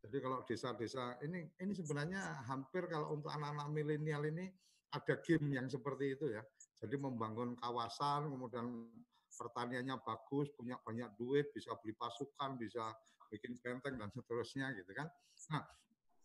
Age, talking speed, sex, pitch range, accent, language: 50-69, 140 wpm, male, 120-160 Hz, native, Indonesian